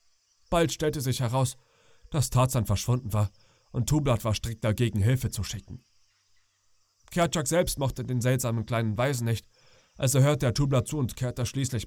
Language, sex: German, male